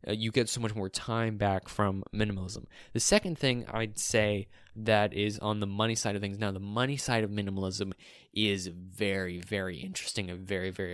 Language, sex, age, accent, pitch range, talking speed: English, male, 20-39, American, 100-120 Hz, 190 wpm